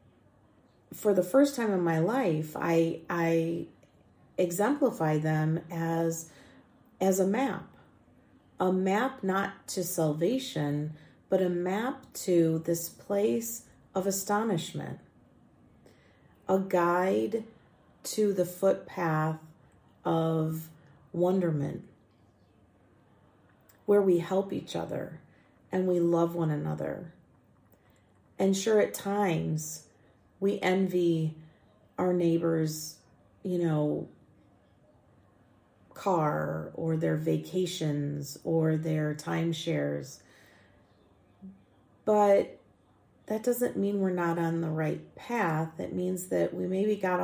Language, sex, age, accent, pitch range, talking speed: English, female, 40-59, American, 115-185 Hz, 100 wpm